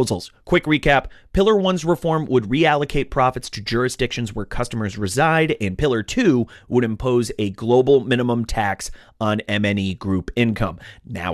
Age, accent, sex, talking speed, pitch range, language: 30-49, American, male, 145 wpm, 105-145 Hz, English